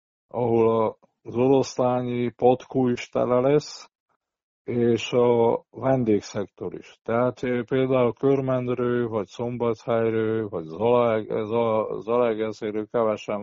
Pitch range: 115-135 Hz